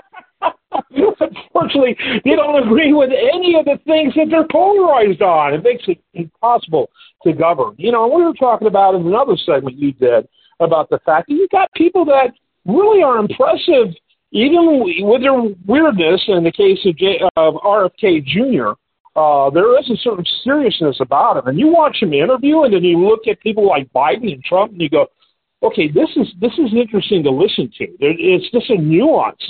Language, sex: English, male